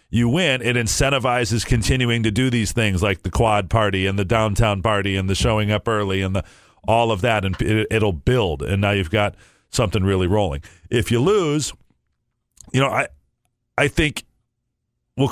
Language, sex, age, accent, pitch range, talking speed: English, male, 40-59, American, 95-115 Hz, 185 wpm